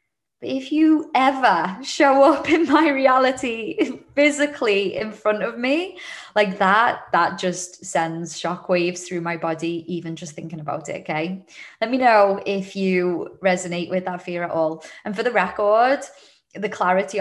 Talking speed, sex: 165 wpm, female